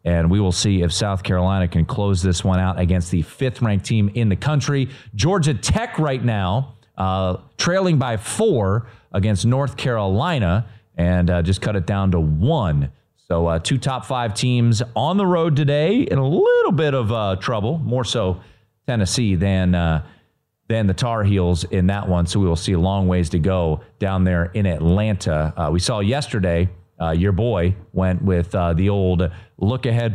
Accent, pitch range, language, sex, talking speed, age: American, 90-120 Hz, English, male, 185 wpm, 40-59